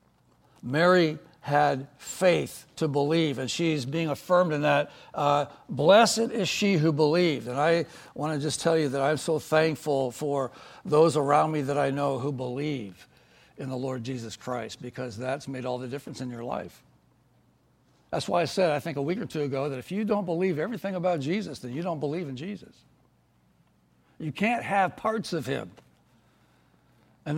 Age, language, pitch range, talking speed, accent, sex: 60-79, English, 135-170 Hz, 180 wpm, American, male